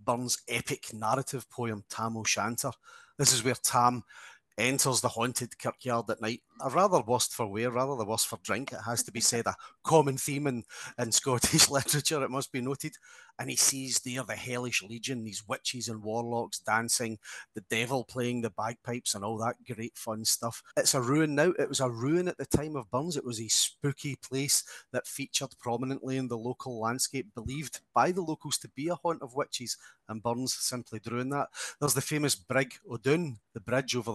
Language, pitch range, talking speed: English, 115-135 Hz, 200 wpm